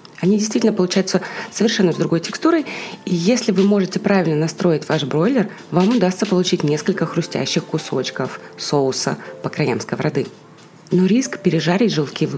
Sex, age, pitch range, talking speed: female, 30-49, 165-215 Hz, 140 wpm